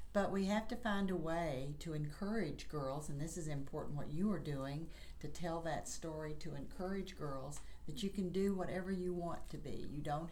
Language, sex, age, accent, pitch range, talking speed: English, female, 50-69, American, 140-175 Hz, 210 wpm